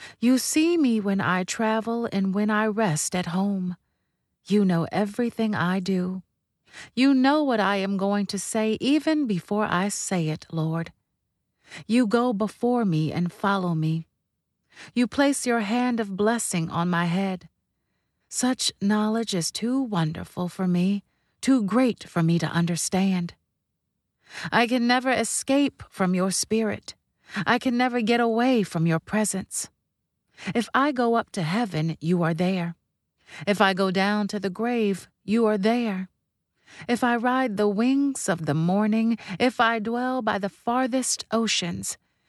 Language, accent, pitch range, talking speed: English, American, 180-230 Hz, 155 wpm